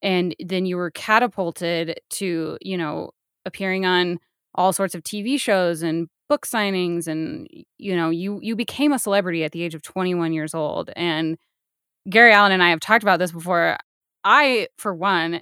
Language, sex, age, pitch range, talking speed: English, female, 10-29, 175-230 Hz, 180 wpm